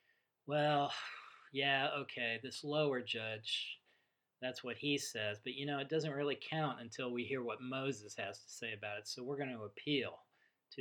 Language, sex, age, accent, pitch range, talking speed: English, male, 40-59, American, 125-150 Hz, 185 wpm